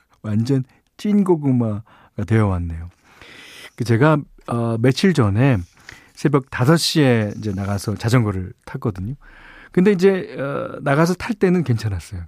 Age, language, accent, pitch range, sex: 40-59, Korean, native, 105-150 Hz, male